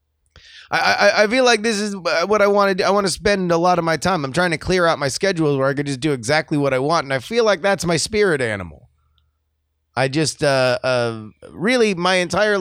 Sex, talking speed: male, 245 wpm